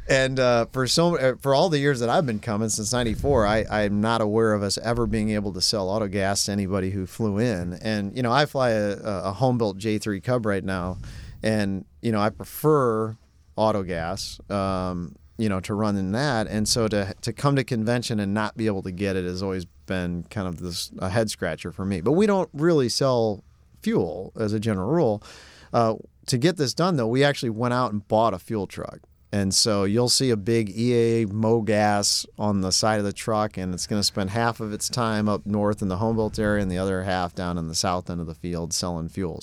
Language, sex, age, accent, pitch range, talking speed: English, male, 40-59, American, 95-115 Hz, 225 wpm